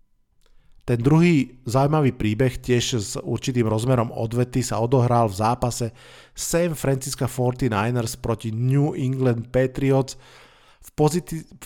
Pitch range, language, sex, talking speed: 115-135 Hz, Slovak, male, 115 wpm